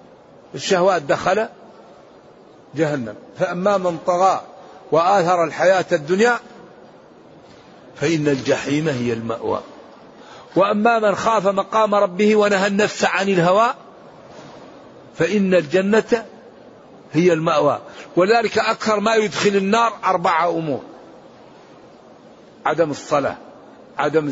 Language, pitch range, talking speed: Arabic, 155-205 Hz, 90 wpm